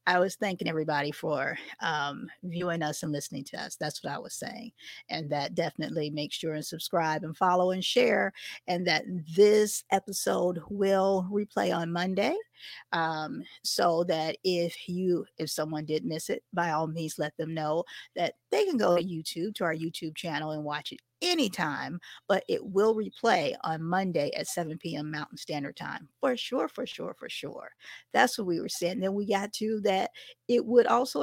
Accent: American